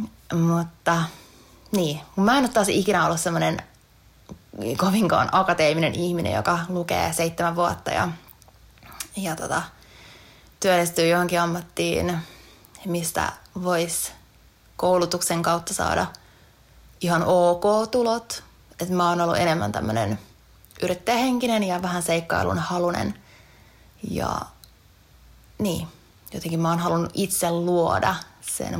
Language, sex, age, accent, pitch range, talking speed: Finnish, female, 20-39, native, 160-190 Hz, 100 wpm